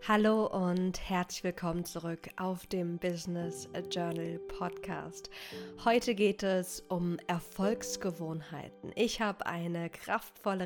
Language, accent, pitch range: German, German, 170-200 Hz